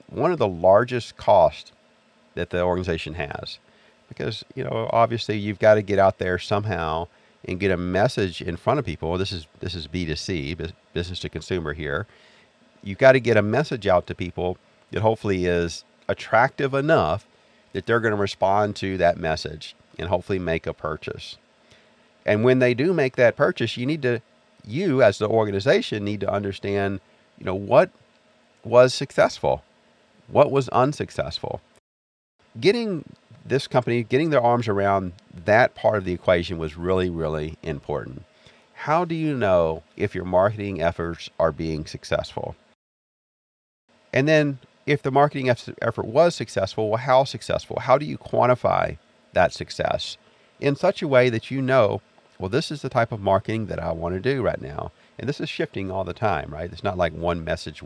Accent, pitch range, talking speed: American, 90-125 Hz, 175 wpm